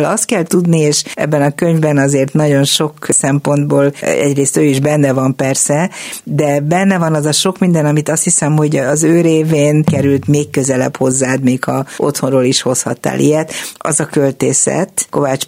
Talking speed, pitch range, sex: 175 wpm, 130-160 Hz, female